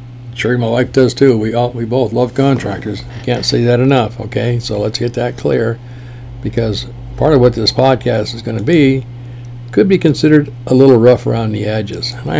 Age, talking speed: 60-79, 200 wpm